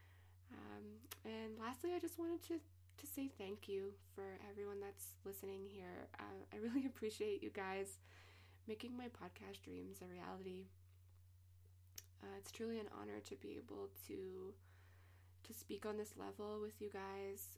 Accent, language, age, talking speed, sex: American, English, 20-39, 155 wpm, female